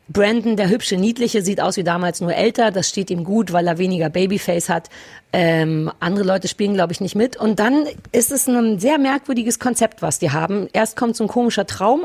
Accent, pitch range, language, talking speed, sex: German, 175-230 Hz, German, 220 wpm, female